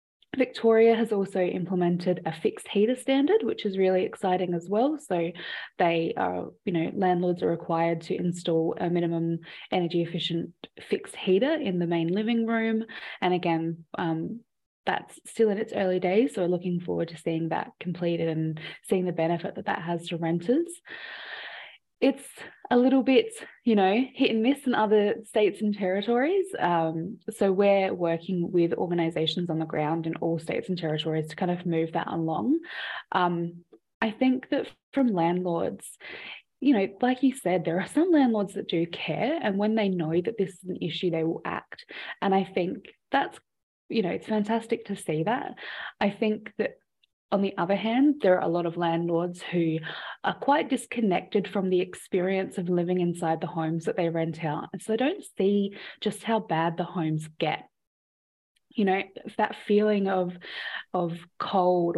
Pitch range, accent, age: 170-220 Hz, Australian, 20-39